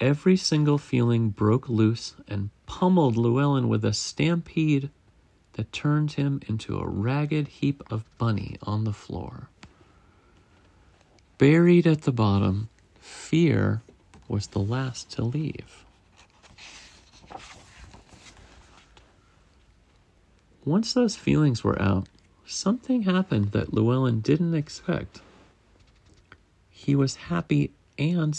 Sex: male